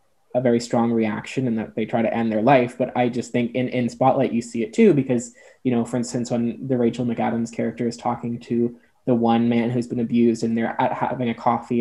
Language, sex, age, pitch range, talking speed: English, male, 20-39, 115-130 Hz, 240 wpm